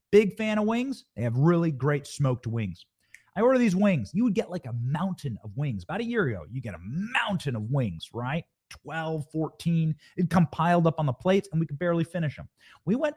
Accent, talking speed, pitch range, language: American, 230 wpm, 135-205 Hz, English